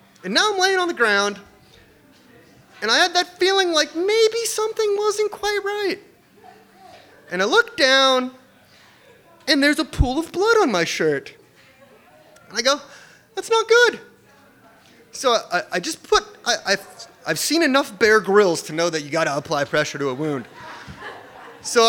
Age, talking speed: 30-49, 170 wpm